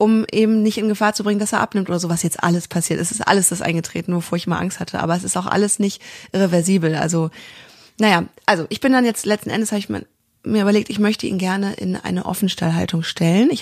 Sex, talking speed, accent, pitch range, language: female, 240 wpm, German, 185-225 Hz, German